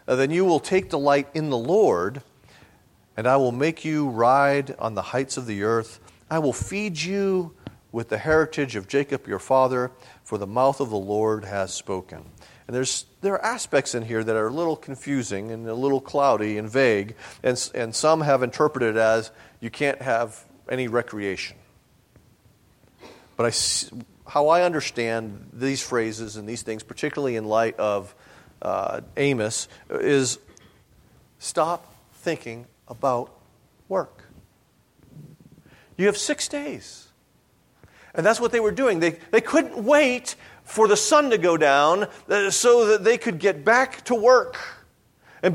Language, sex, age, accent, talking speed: English, male, 40-59, American, 160 wpm